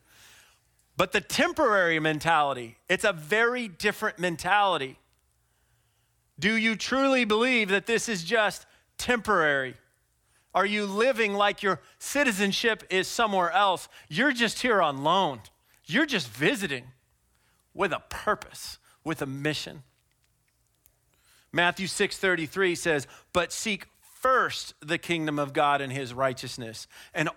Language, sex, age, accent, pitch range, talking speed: English, male, 40-59, American, 130-185 Hz, 125 wpm